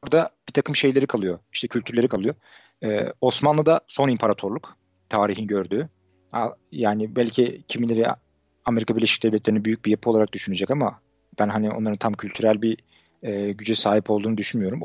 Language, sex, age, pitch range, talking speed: Turkish, male, 40-59, 105-130 Hz, 150 wpm